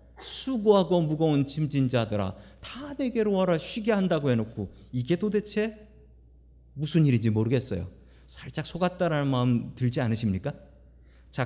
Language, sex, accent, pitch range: Korean, male, native, 100-155 Hz